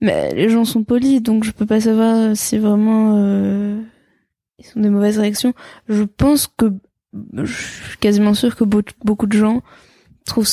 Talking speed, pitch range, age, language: 170 wpm, 200-220 Hz, 20-39, French